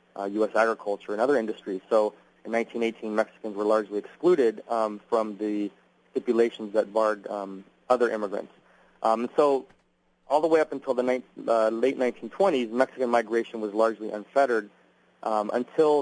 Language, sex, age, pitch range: English, male, 30-49, 110-125 Hz